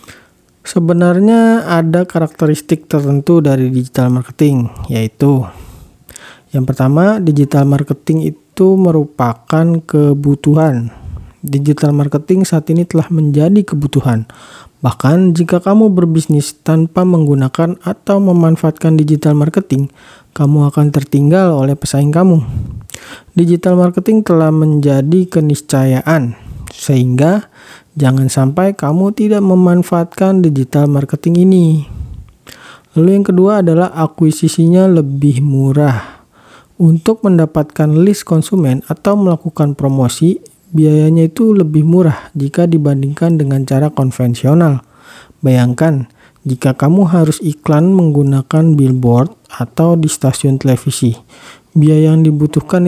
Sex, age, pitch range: male, 40-59, 135-175 Hz